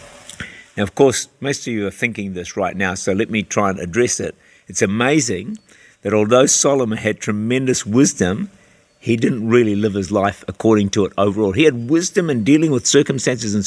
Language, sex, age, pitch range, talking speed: English, male, 50-69, 105-140 Hz, 195 wpm